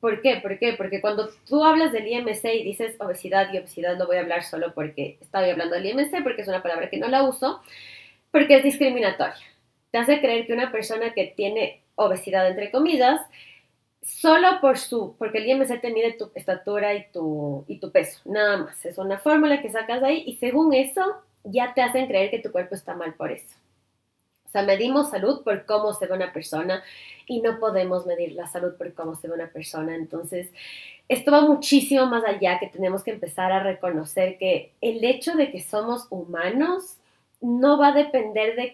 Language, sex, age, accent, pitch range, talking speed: Spanish, female, 20-39, Mexican, 185-260 Hz, 200 wpm